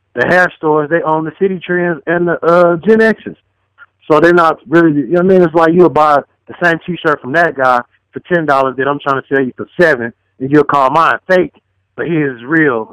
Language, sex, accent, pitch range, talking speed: English, male, American, 130-175 Hz, 235 wpm